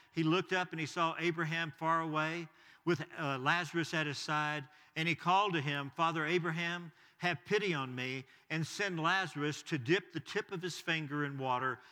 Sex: male